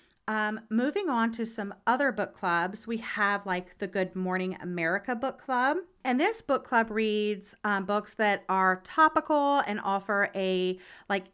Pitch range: 190-245 Hz